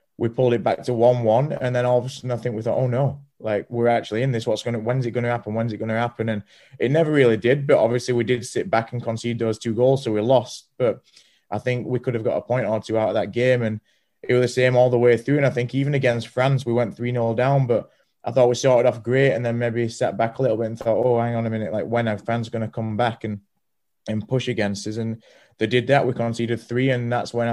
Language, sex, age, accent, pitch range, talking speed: English, male, 20-39, British, 110-125 Hz, 290 wpm